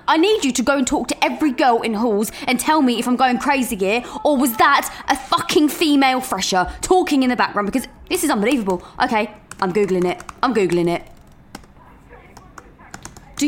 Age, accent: 20-39, British